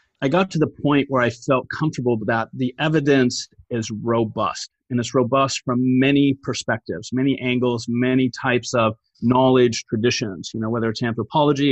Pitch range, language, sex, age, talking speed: 125-145 Hz, English, male, 30-49, 165 wpm